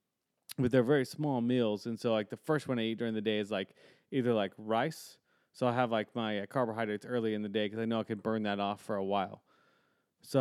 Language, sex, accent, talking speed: English, male, American, 255 wpm